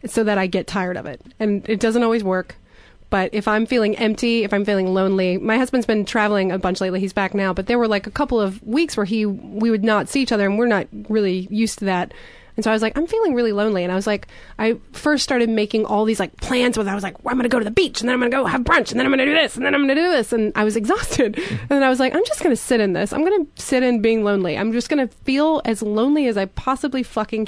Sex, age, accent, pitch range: female, 30-49, American, 195-245 Hz